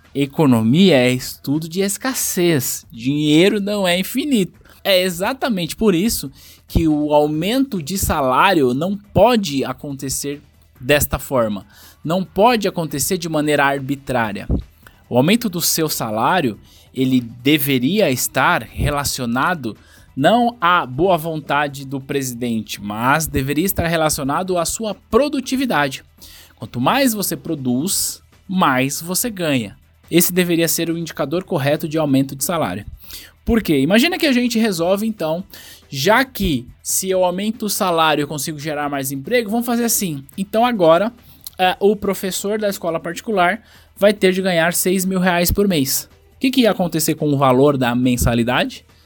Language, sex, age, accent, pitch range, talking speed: Portuguese, male, 20-39, Brazilian, 130-195 Hz, 145 wpm